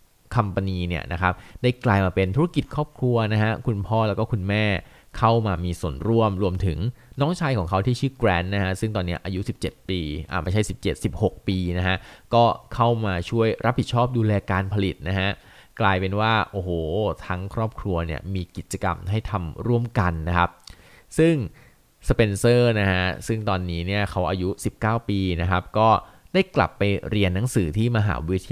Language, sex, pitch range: Thai, male, 90-115 Hz